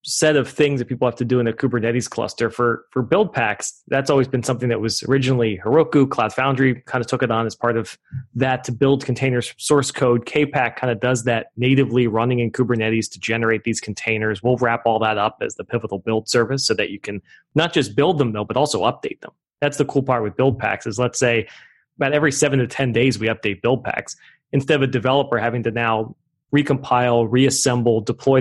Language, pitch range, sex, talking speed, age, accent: English, 115-135 Hz, male, 225 wpm, 30-49, American